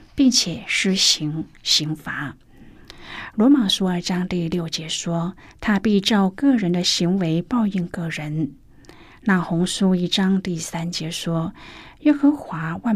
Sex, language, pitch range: female, Chinese, 170-230 Hz